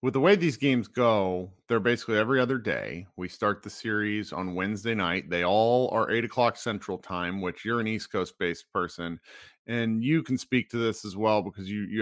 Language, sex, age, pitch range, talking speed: English, male, 40-59, 100-125 Hz, 215 wpm